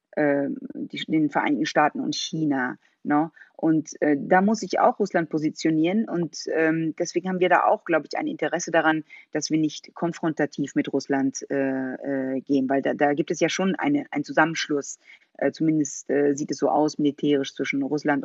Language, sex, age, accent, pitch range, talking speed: German, female, 30-49, German, 155-195 Hz, 180 wpm